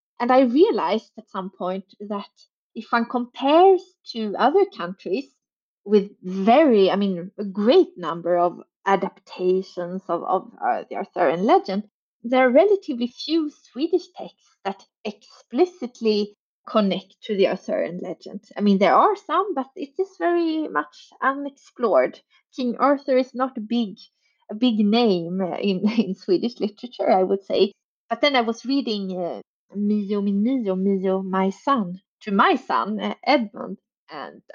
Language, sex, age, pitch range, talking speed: English, female, 20-39, 195-255 Hz, 140 wpm